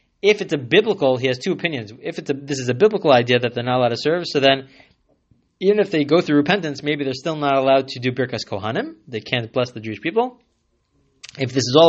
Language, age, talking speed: English, 20-39, 245 wpm